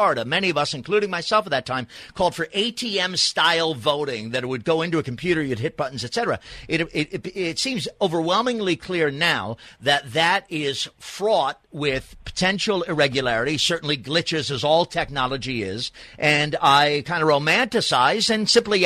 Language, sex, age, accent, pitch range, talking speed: English, male, 50-69, American, 145-200 Hz, 160 wpm